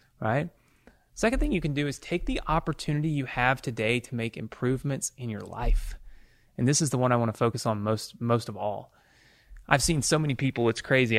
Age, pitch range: 30-49, 110-140 Hz